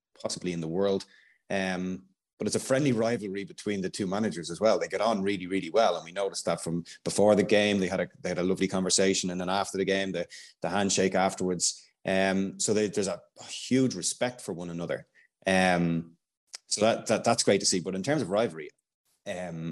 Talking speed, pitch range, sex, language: 215 wpm, 85-95 Hz, male, English